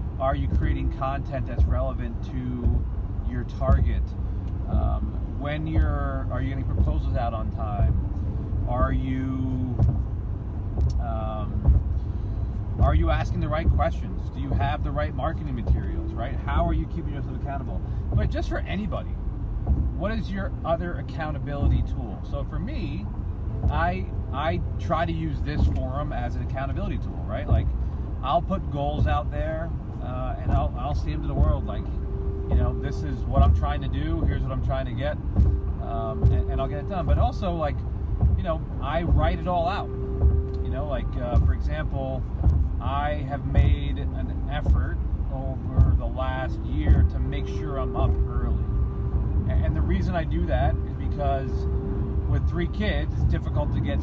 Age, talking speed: 30-49, 170 wpm